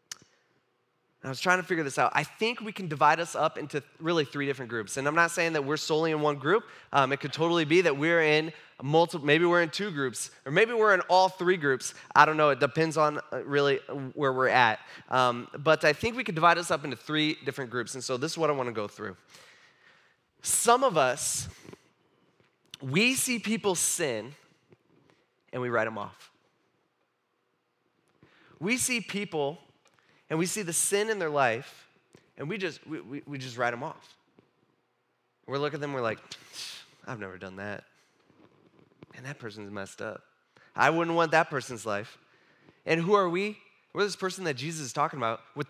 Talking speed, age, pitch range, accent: 195 wpm, 20-39, 140-180 Hz, American